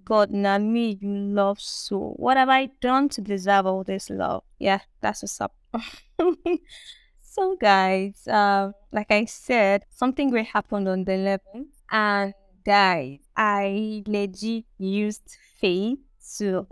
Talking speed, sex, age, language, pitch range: 135 wpm, female, 20-39, English, 190-220 Hz